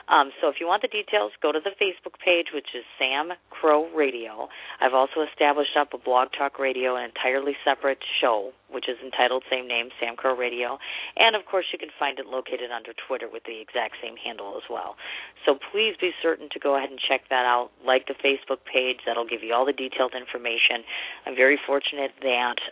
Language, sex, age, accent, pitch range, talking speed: English, female, 40-59, American, 125-150 Hz, 215 wpm